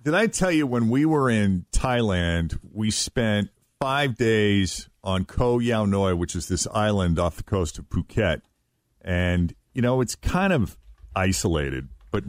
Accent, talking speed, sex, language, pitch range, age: American, 165 wpm, male, English, 80-110 Hz, 40-59